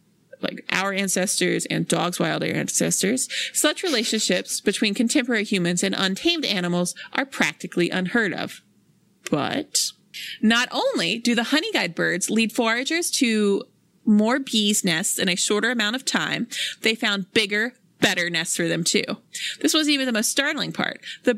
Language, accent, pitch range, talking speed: English, American, 200-275 Hz, 150 wpm